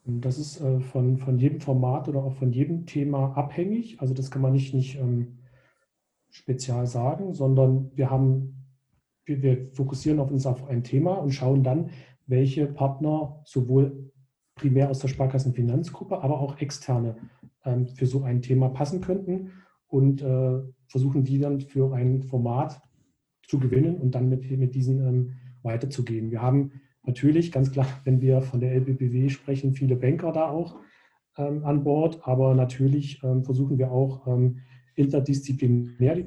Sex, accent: male, German